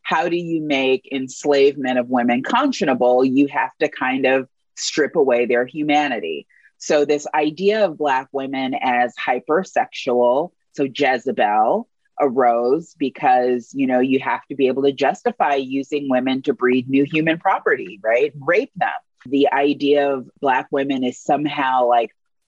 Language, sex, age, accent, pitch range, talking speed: English, female, 30-49, American, 125-150 Hz, 150 wpm